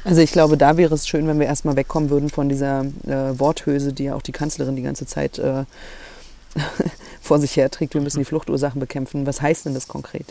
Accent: German